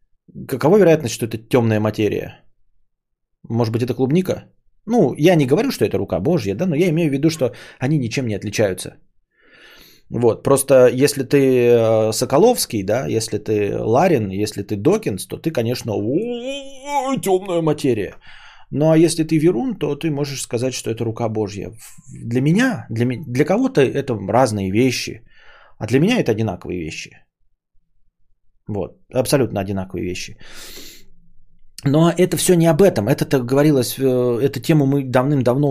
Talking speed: 150 wpm